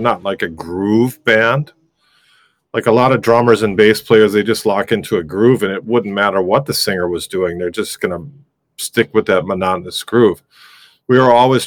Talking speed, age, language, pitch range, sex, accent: 205 wpm, 40-59, English, 100-125 Hz, male, American